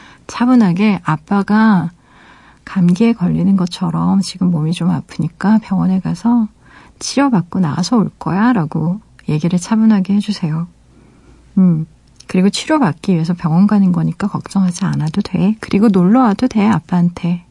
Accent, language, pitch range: native, Korean, 175-205 Hz